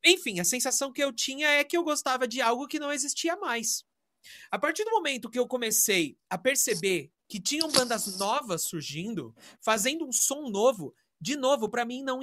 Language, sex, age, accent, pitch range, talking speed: Portuguese, male, 30-49, Brazilian, 170-260 Hz, 190 wpm